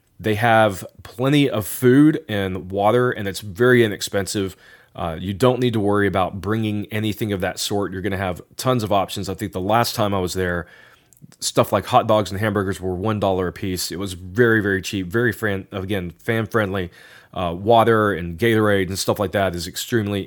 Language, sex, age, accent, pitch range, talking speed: English, male, 30-49, American, 95-115 Hz, 190 wpm